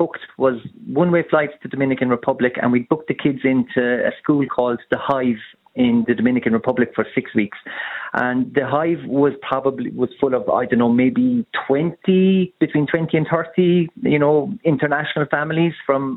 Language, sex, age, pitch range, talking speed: English, male, 30-49, 130-155 Hz, 175 wpm